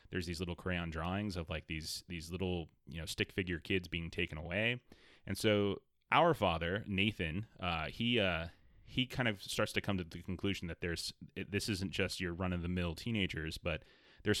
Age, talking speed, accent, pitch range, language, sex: 30-49, 190 wpm, American, 85-100 Hz, English, male